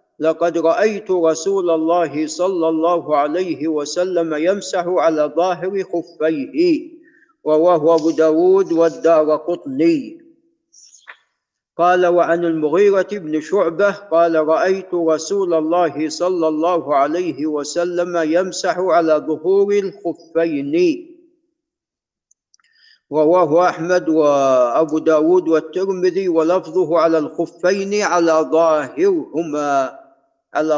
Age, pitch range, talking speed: 50-69, 160-195 Hz, 90 wpm